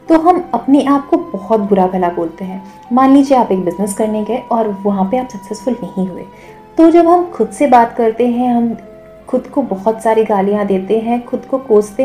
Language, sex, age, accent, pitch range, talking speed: Hindi, female, 30-49, native, 195-265 Hz, 215 wpm